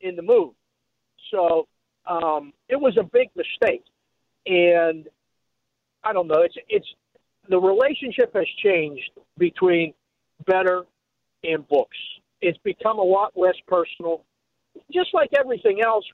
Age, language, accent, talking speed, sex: 50-69, English, American, 125 wpm, male